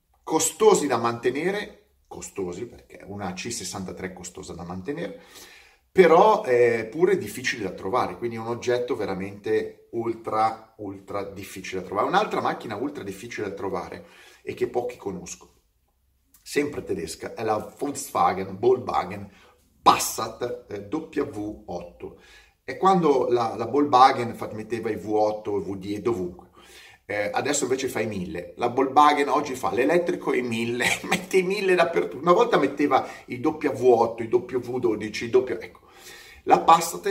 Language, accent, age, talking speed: Italian, native, 30-49, 135 wpm